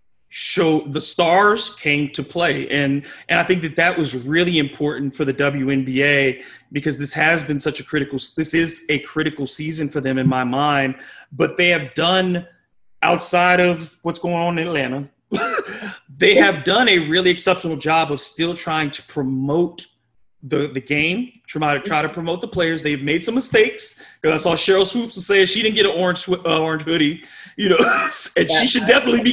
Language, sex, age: English, male, 30-49